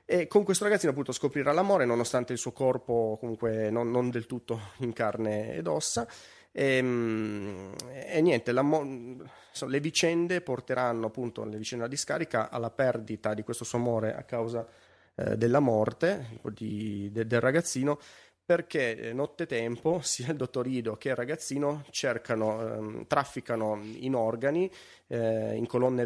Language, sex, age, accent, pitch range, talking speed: Italian, male, 30-49, native, 110-130 Hz, 150 wpm